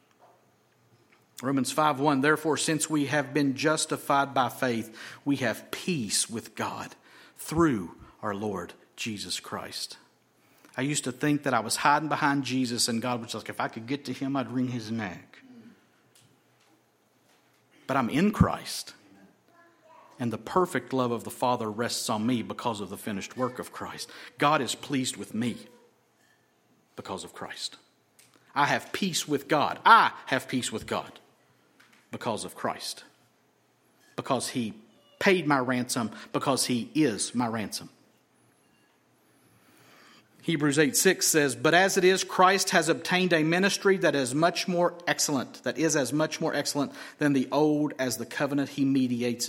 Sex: male